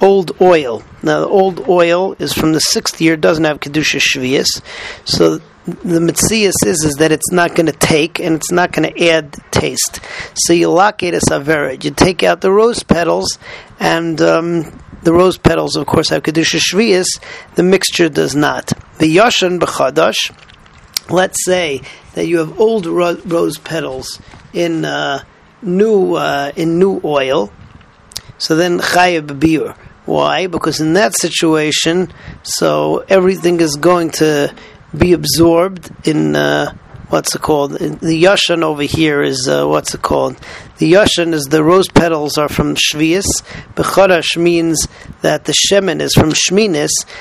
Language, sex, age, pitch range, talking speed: English, male, 40-59, 150-180 Hz, 160 wpm